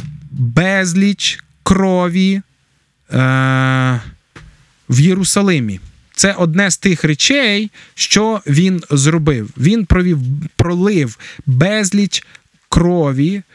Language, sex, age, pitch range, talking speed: Ukrainian, male, 20-39, 125-175 Hz, 80 wpm